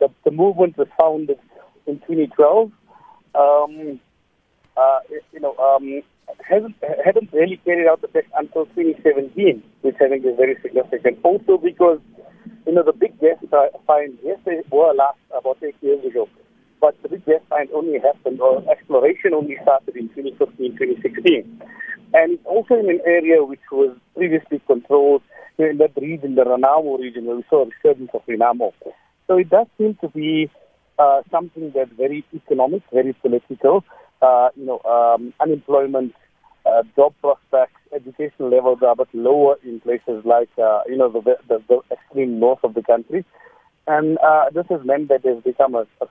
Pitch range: 130-180 Hz